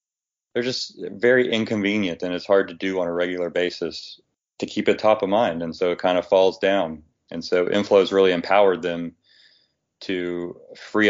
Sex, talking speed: male, 190 wpm